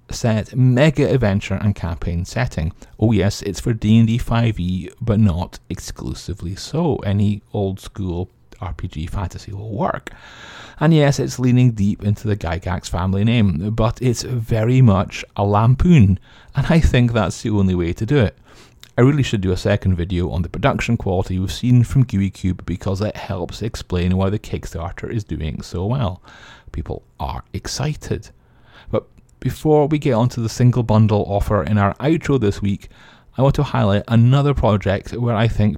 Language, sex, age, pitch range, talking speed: English, male, 30-49, 95-125 Hz, 170 wpm